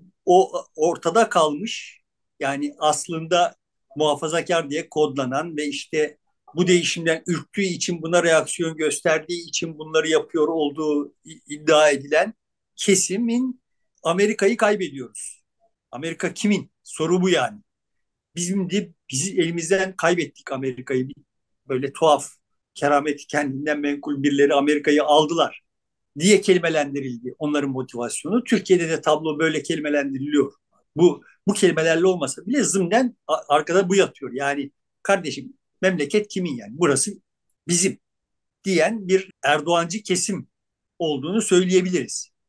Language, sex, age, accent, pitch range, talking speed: Turkish, male, 50-69, native, 150-195 Hz, 105 wpm